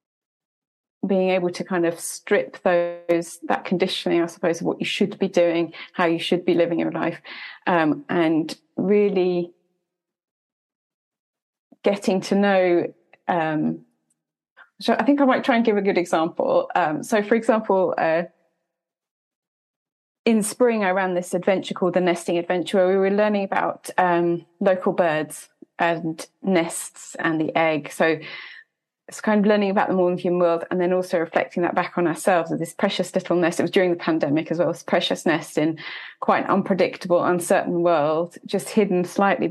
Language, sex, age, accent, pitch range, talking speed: English, female, 30-49, British, 170-195 Hz, 170 wpm